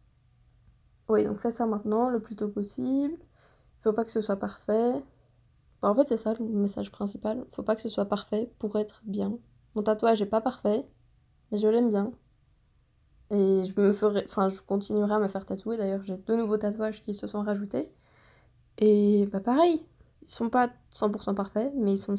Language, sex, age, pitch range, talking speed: French, female, 20-39, 205-235 Hz, 200 wpm